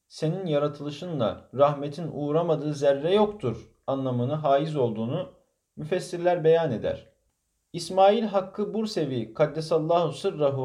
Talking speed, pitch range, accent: 95 wpm, 125-180 Hz, native